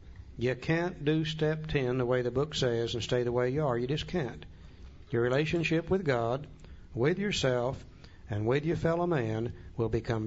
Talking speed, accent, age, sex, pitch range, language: 185 wpm, American, 60-79, male, 95-155 Hz, English